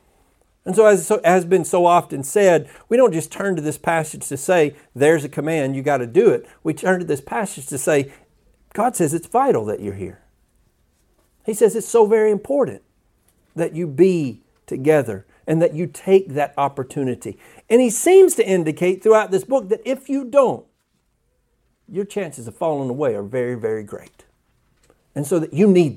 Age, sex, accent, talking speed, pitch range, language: 50-69, male, American, 185 wpm, 135-190 Hz, English